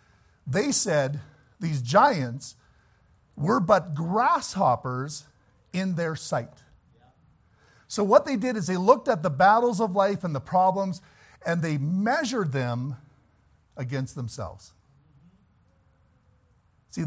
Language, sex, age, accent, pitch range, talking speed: English, male, 50-69, American, 135-220 Hz, 115 wpm